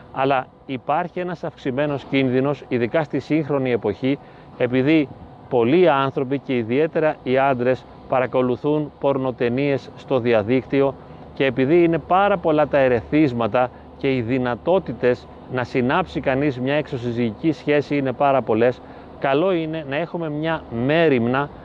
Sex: male